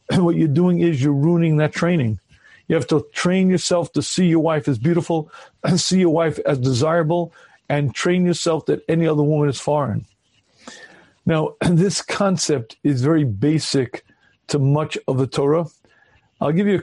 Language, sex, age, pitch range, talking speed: English, male, 50-69, 145-175 Hz, 175 wpm